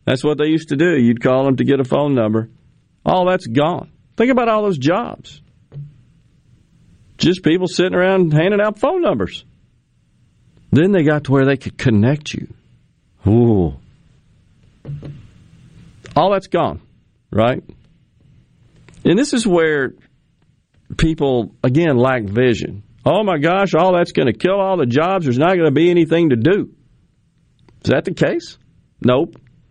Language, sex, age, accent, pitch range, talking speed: English, male, 50-69, American, 125-175 Hz, 155 wpm